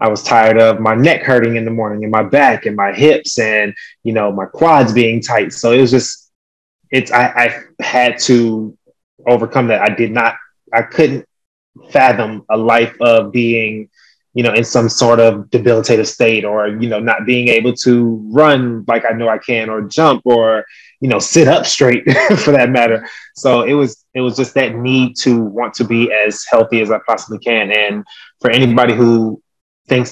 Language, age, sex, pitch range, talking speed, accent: English, 20-39, male, 115-130 Hz, 195 wpm, American